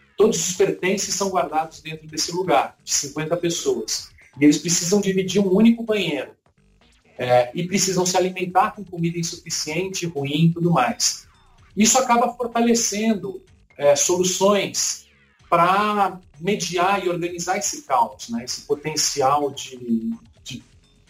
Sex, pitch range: male, 145-195 Hz